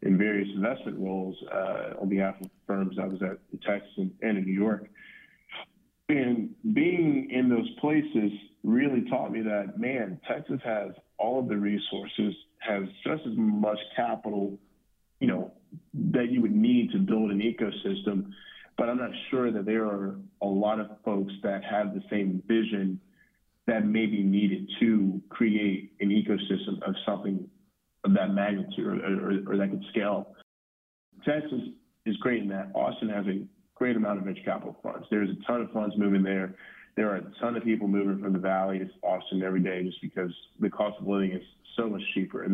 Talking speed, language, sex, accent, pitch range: 190 wpm, English, male, American, 95-110 Hz